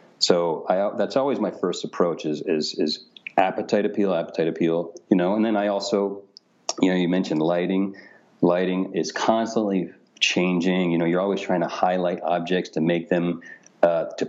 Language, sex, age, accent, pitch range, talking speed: English, male, 40-59, American, 85-95 Hz, 175 wpm